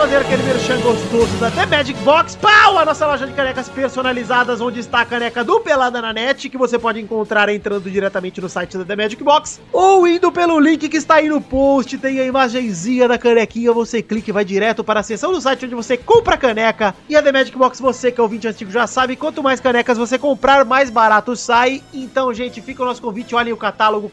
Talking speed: 230 wpm